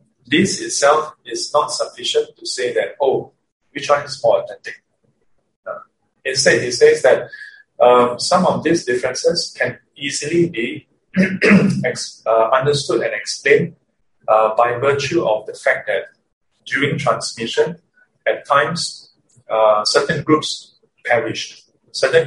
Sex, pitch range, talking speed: male, 120-195 Hz, 130 wpm